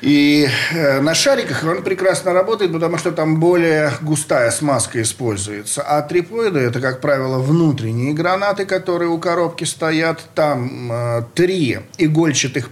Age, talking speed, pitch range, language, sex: 40-59, 135 wpm, 125-170 Hz, Russian, male